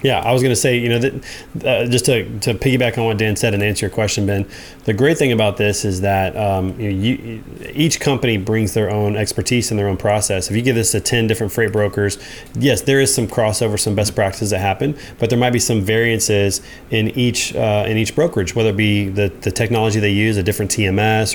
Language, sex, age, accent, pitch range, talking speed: English, male, 20-39, American, 100-120 Hz, 230 wpm